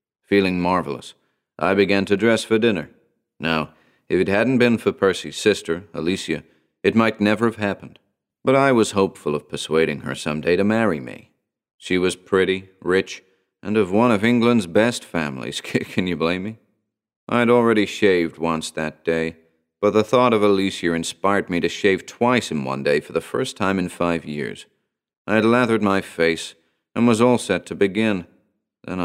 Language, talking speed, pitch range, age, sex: English, 180 wpm, 85-110 Hz, 40-59, male